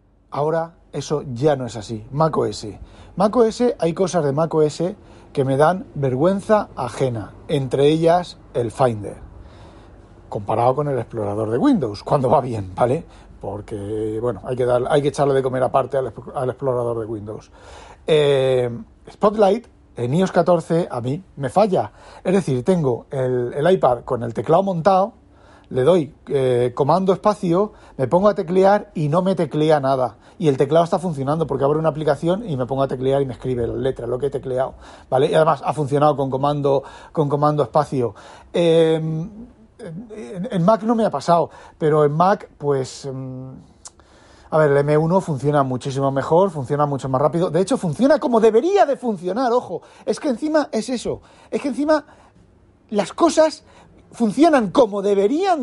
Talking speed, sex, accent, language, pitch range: 170 wpm, male, Spanish, Spanish, 130-200 Hz